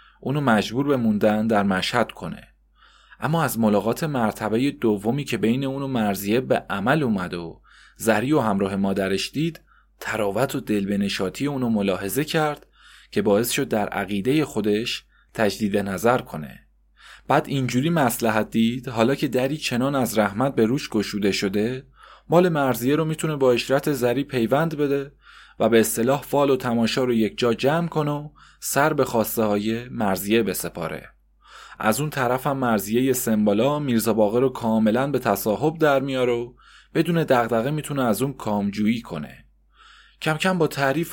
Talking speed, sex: 155 wpm, male